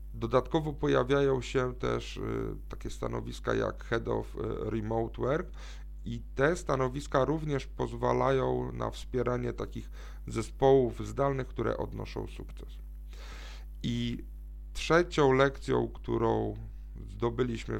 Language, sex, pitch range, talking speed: Polish, male, 105-130 Hz, 100 wpm